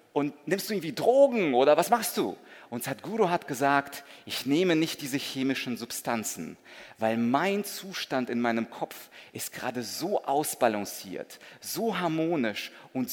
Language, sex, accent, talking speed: German, male, German, 145 wpm